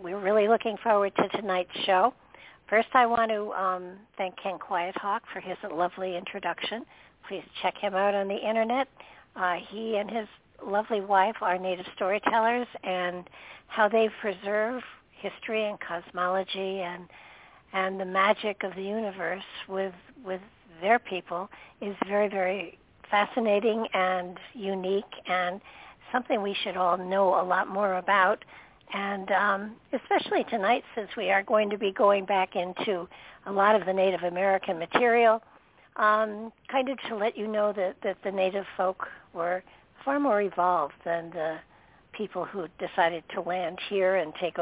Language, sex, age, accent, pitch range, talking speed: English, female, 60-79, American, 185-215 Hz, 155 wpm